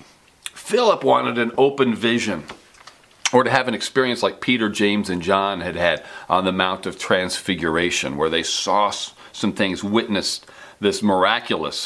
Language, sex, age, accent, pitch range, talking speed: English, male, 40-59, American, 95-115 Hz, 150 wpm